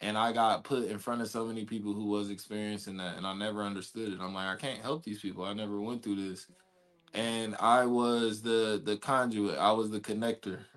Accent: American